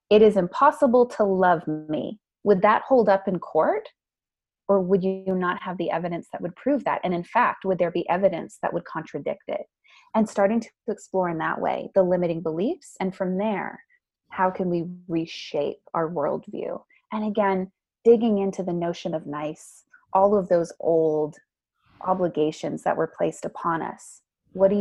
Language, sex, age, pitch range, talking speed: English, female, 20-39, 170-210 Hz, 175 wpm